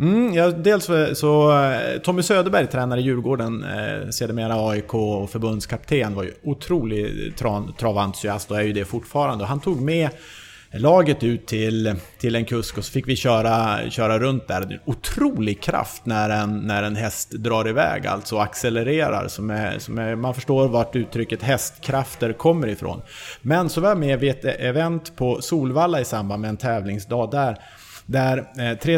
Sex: male